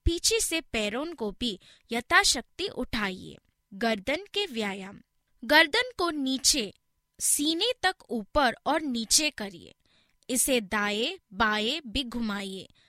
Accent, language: native, Hindi